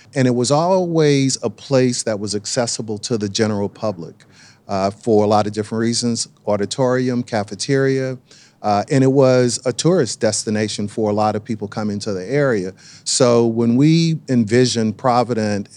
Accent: American